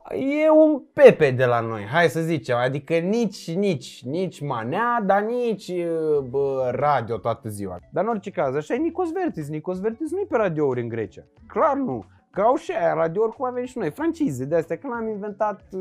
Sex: male